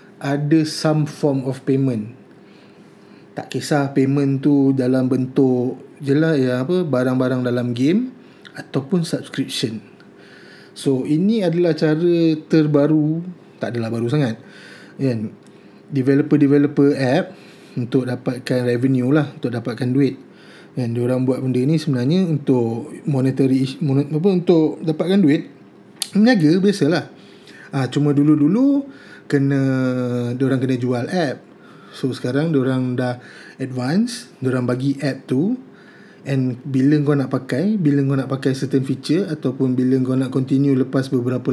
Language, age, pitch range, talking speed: Malay, 30-49, 130-160 Hz, 130 wpm